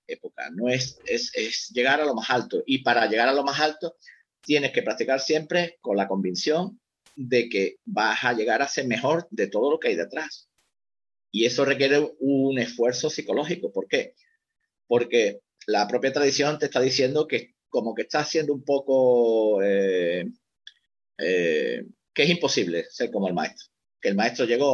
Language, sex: Spanish, male